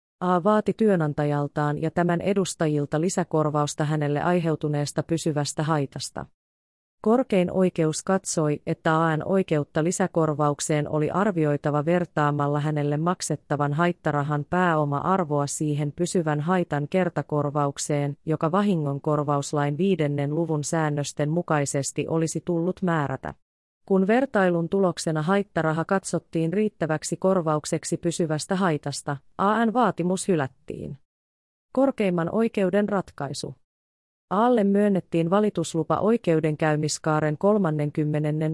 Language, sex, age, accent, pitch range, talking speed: Finnish, female, 30-49, native, 150-185 Hz, 90 wpm